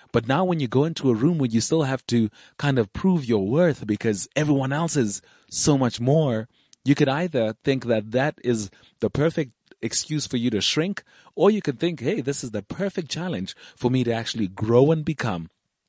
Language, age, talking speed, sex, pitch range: English, 30-49, 210 wpm, male, 100-135 Hz